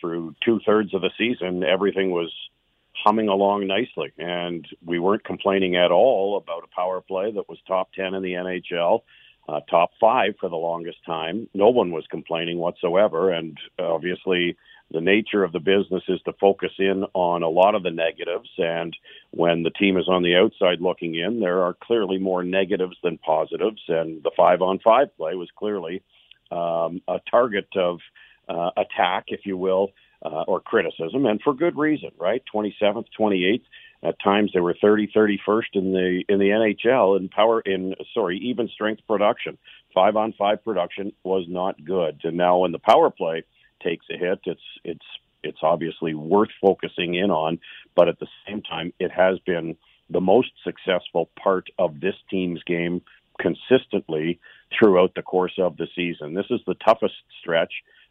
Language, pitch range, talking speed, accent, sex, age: English, 85-100 Hz, 175 wpm, American, male, 50-69